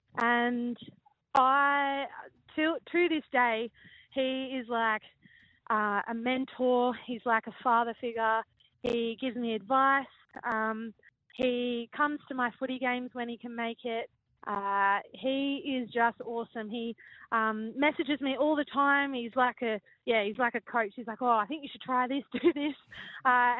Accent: Australian